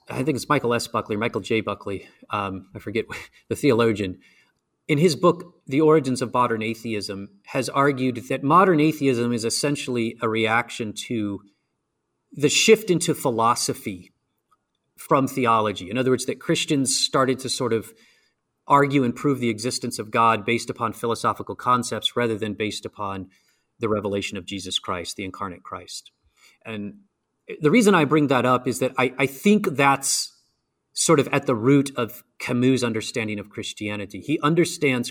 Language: English